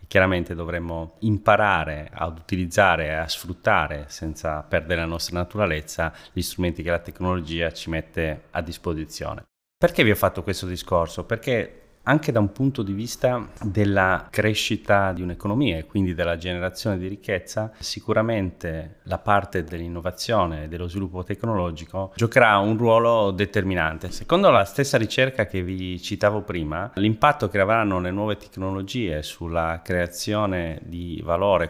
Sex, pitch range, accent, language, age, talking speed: male, 85-105 Hz, native, Italian, 30-49, 140 wpm